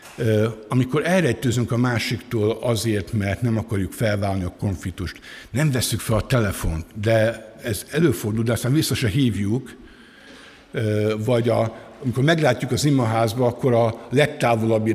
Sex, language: male, Hungarian